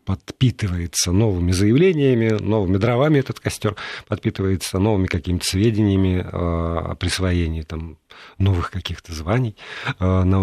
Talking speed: 115 wpm